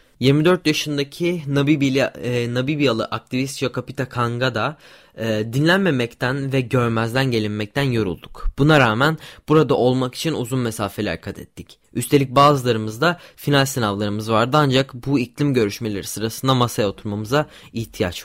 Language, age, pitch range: Turkish, 10-29, 110-145 Hz